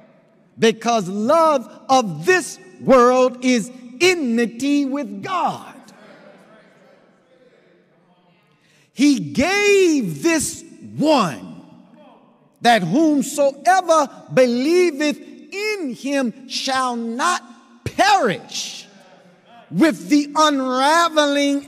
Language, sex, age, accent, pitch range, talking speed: English, male, 50-69, American, 210-285 Hz, 65 wpm